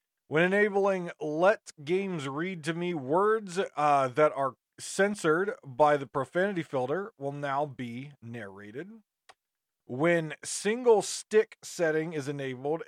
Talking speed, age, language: 120 wpm, 40-59, English